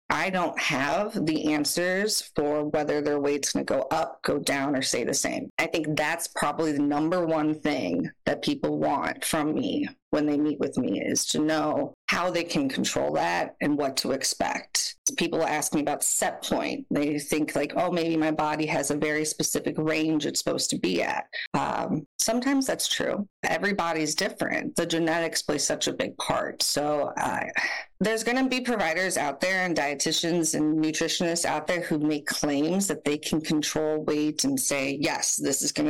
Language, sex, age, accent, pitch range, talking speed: English, female, 30-49, American, 150-220 Hz, 190 wpm